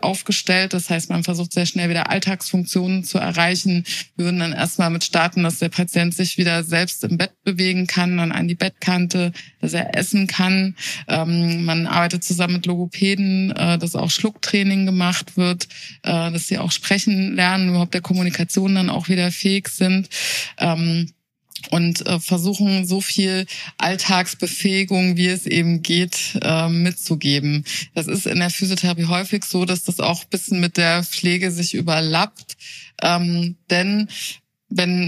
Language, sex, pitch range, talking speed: German, female, 170-190 Hz, 150 wpm